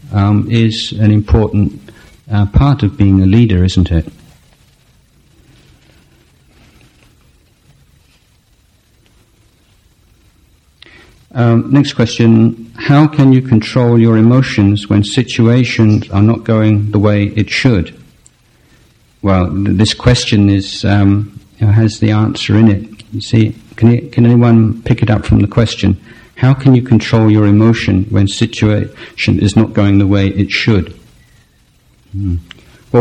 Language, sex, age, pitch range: Thai, male, 50-69, 100-115 Hz